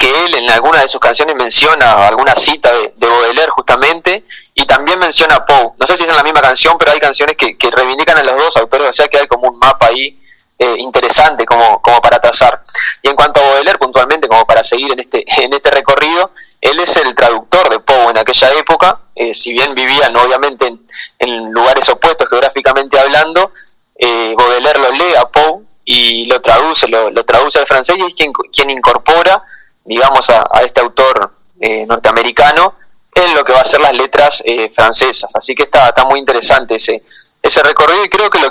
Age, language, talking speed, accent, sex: 20-39, Spanish, 210 wpm, Argentinian, male